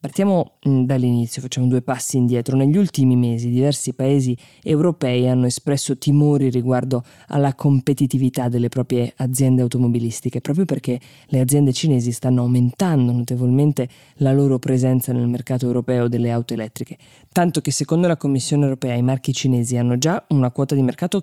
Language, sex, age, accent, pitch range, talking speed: Italian, female, 20-39, native, 125-150 Hz, 155 wpm